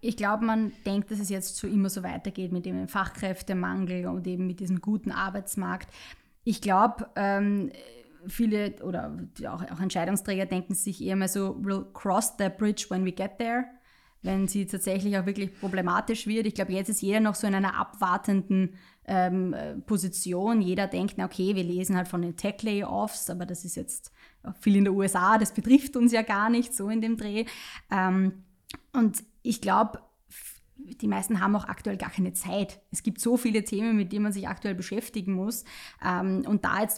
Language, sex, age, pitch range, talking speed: German, female, 20-39, 190-215 Hz, 180 wpm